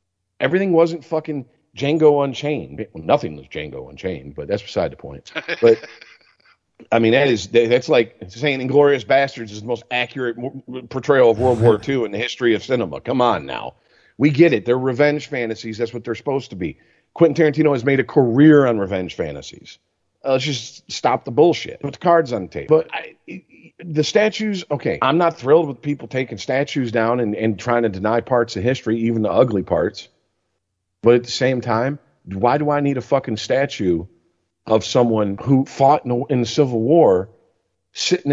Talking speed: 190 wpm